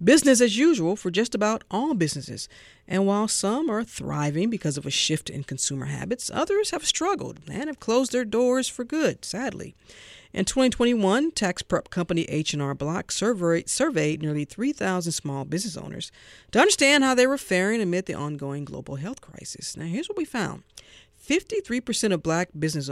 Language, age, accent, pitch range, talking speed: English, 50-69, American, 155-230 Hz, 175 wpm